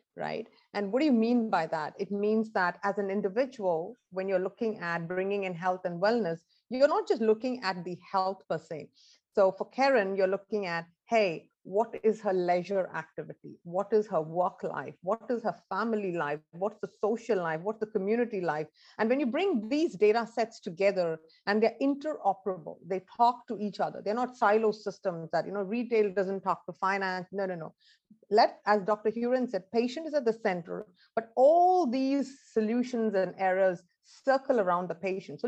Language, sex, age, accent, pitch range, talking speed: English, female, 50-69, Indian, 180-225 Hz, 195 wpm